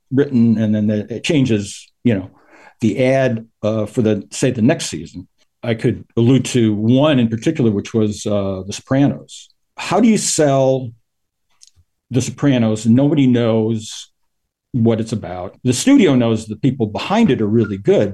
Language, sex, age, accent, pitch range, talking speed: English, male, 50-69, American, 110-135 Hz, 165 wpm